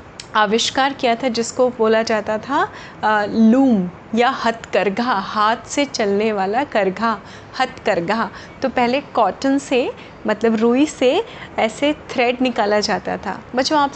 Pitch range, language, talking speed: 210-260 Hz, Hindi, 145 wpm